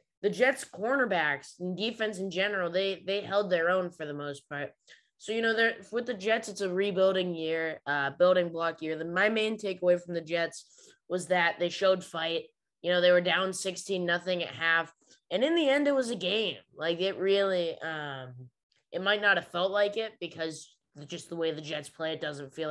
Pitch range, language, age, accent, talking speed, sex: 160-190 Hz, English, 20-39, American, 210 wpm, female